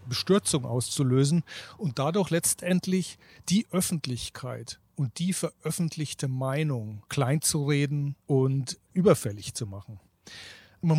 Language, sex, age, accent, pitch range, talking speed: German, male, 40-59, German, 125-165 Hz, 105 wpm